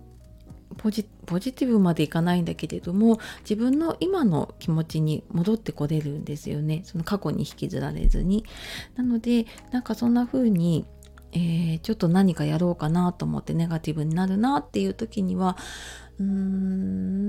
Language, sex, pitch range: Japanese, female, 155-210 Hz